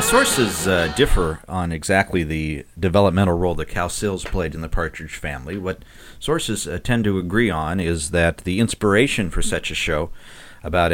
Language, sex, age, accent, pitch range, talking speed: English, male, 50-69, American, 85-110 Hz, 175 wpm